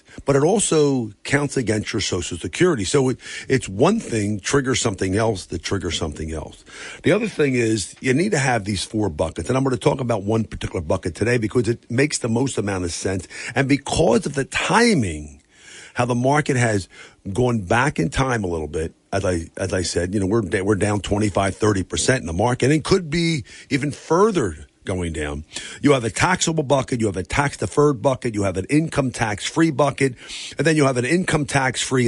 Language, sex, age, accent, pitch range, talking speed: English, male, 50-69, American, 105-150 Hz, 215 wpm